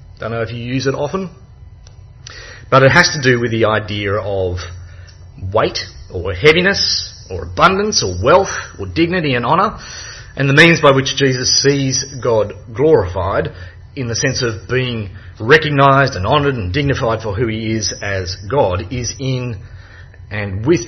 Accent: Australian